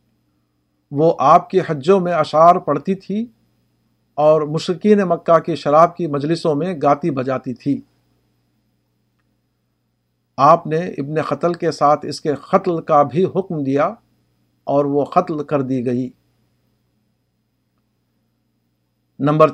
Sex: male